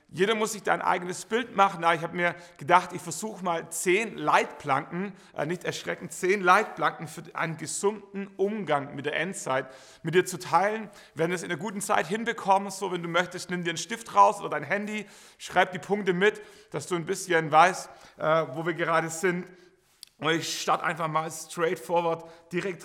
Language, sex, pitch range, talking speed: German, male, 160-200 Hz, 195 wpm